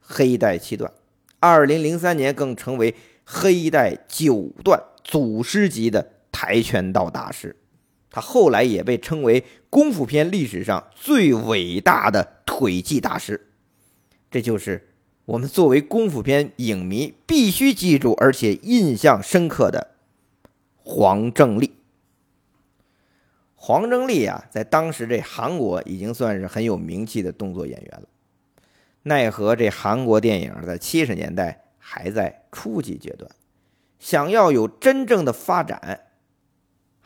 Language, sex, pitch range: Chinese, male, 110-165 Hz